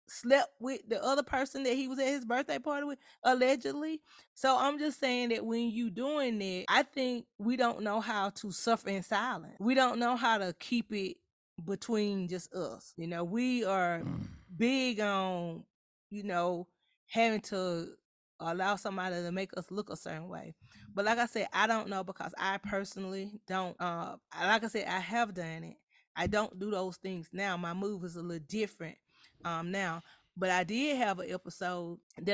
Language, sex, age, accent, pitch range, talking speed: English, female, 20-39, American, 185-250 Hz, 185 wpm